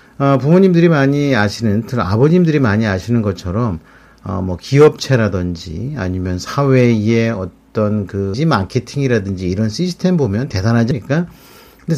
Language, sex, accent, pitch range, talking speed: English, male, Korean, 110-155 Hz, 110 wpm